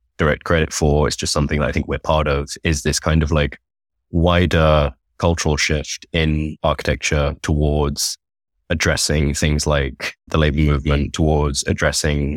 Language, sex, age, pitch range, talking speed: English, male, 20-39, 75-85 Hz, 150 wpm